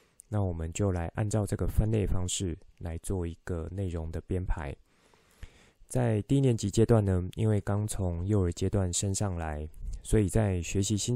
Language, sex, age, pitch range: Chinese, male, 20-39, 85-105 Hz